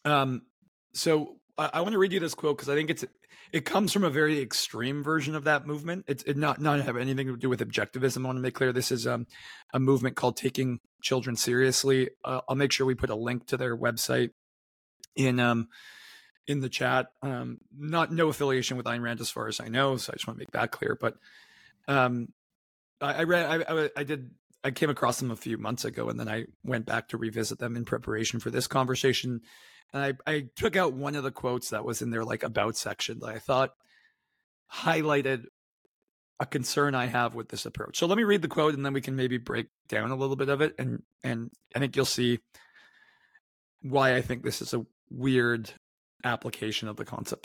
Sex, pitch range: male, 120-150 Hz